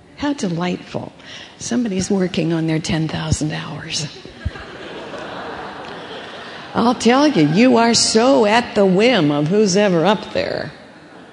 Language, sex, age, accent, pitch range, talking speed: English, female, 50-69, American, 170-225 Hz, 115 wpm